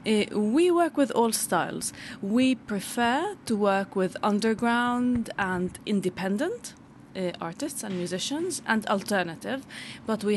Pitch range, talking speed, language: 185-230 Hz, 125 wpm, French